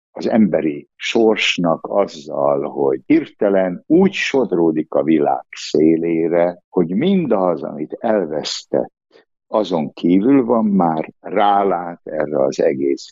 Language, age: Hungarian, 60-79